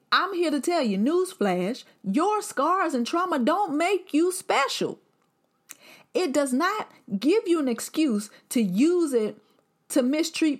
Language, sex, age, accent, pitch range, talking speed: English, female, 30-49, American, 190-255 Hz, 145 wpm